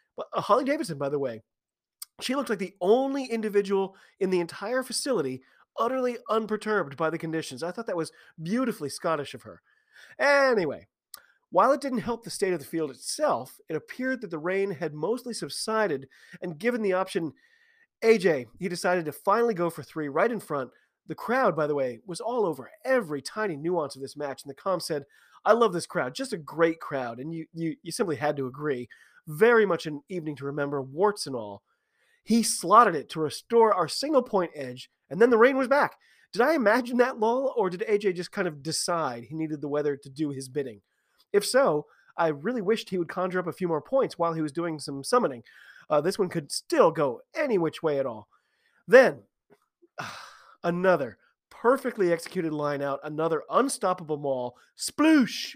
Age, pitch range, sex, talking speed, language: 30-49, 150-230 Hz, male, 195 wpm, English